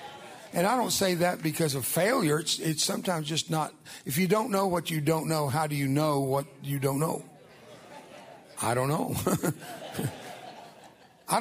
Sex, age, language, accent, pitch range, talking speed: male, 60-79, English, American, 135-170 Hz, 175 wpm